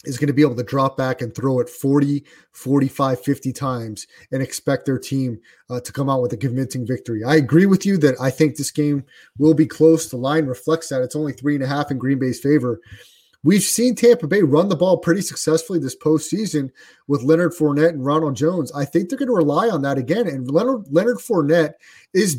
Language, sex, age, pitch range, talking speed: English, male, 30-49, 135-165 Hz, 215 wpm